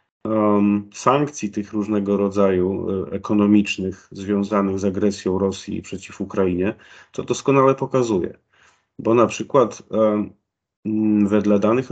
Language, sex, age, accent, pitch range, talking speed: Polish, male, 40-59, native, 100-110 Hz, 95 wpm